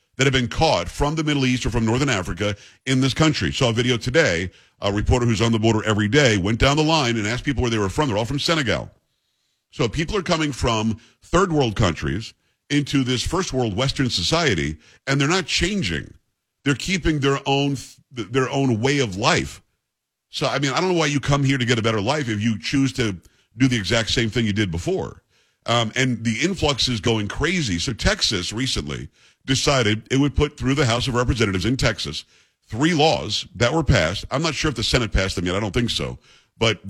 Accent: American